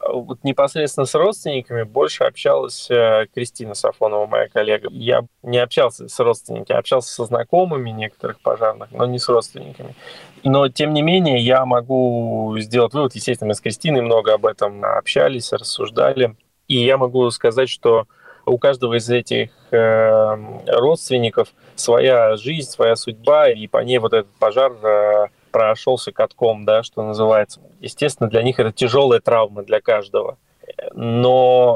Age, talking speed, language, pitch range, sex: 20-39, 140 wpm, Russian, 115-140 Hz, male